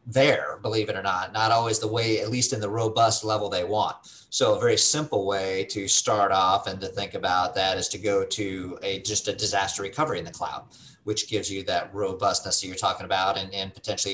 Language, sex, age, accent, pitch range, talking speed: English, male, 30-49, American, 100-115 Hz, 230 wpm